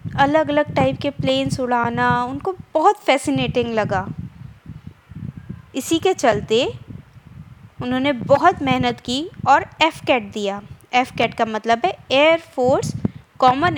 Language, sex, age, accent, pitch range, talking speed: Hindi, female, 20-39, native, 235-315 Hz, 125 wpm